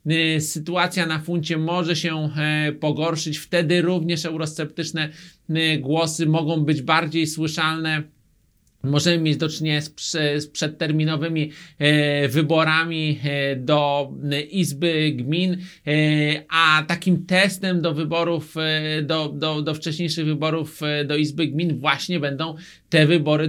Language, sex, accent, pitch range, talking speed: Polish, male, native, 145-170 Hz, 105 wpm